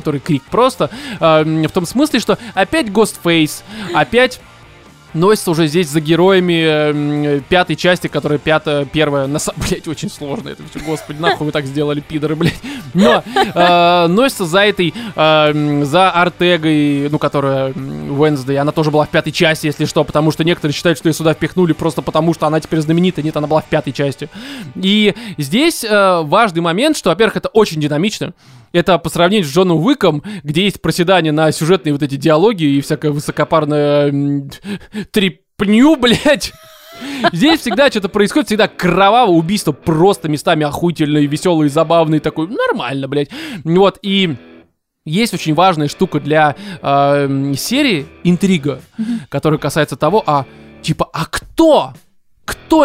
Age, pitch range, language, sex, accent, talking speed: 20-39, 150-195 Hz, Russian, male, native, 150 wpm